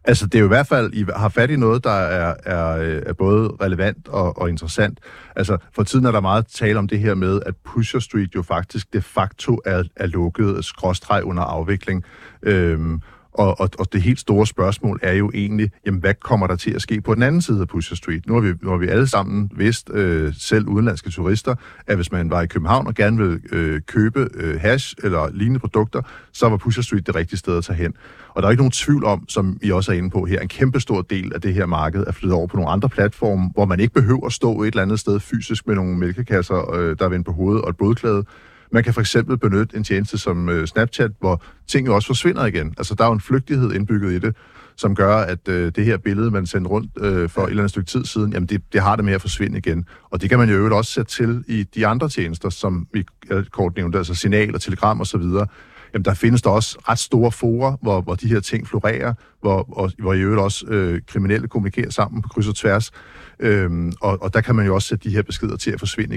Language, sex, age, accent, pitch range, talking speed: Danish, male, 60-79, native, 95-110 Hz, 245 wpm